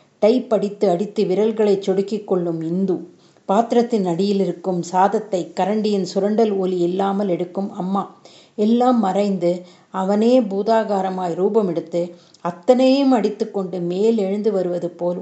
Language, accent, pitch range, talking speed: Tamil, native, 180-230 Hz, 115 wpm